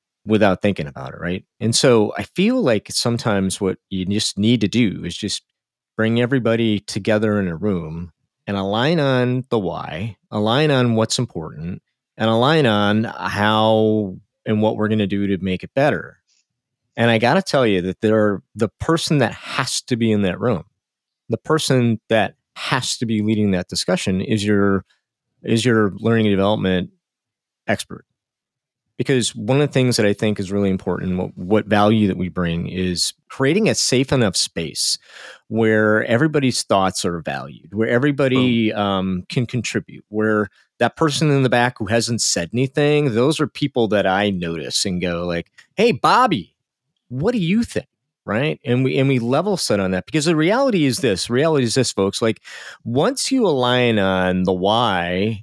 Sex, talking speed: male, 175 wpm